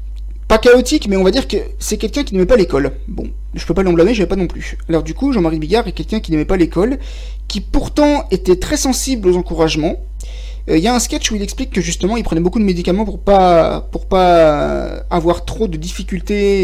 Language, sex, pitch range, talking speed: French, male, 155-205 Hz, 225 wpm